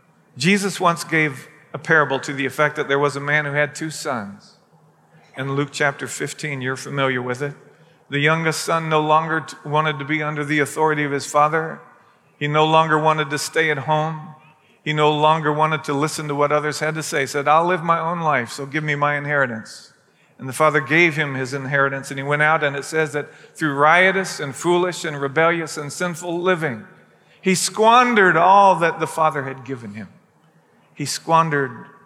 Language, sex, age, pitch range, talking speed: English, male, 40-59, 140-160 Hz, 200 wpm